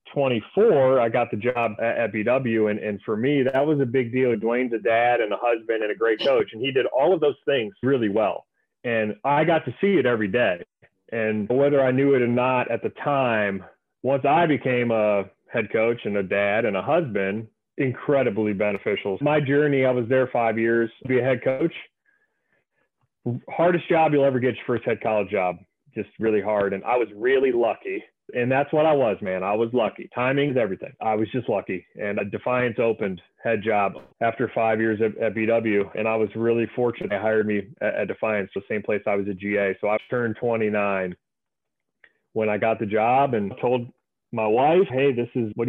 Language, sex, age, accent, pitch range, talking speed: English, male, 30-49, American, 110-130 Hz, 210 wpm